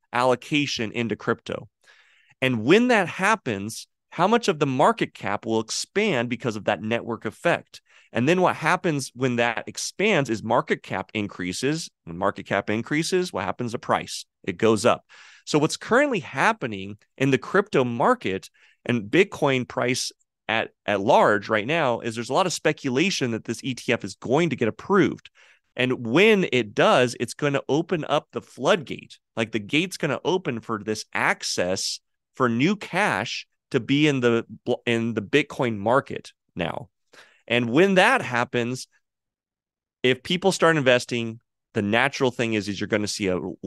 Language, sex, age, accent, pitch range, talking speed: English, male, 30-49, American, 110-145 Hz, 170 wpm